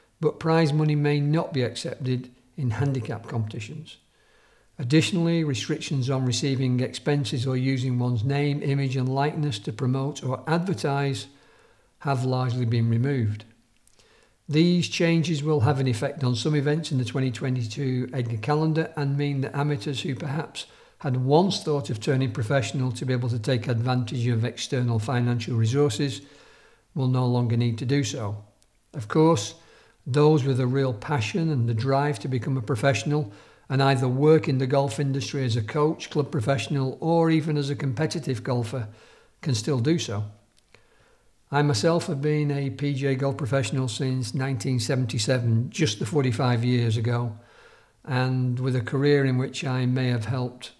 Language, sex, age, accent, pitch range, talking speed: English, male, 50-69, British, 120-145 Hz, 160 wpm